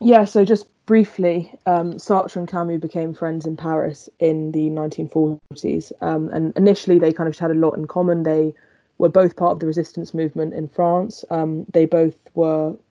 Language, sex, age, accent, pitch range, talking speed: English, female, 20-39, British, 160-185 Hz, 180 wpm